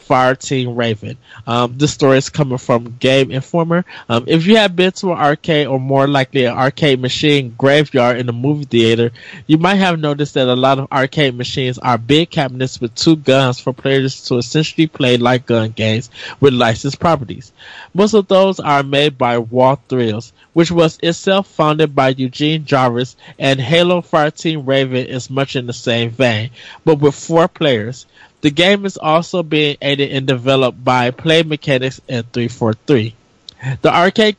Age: 20-39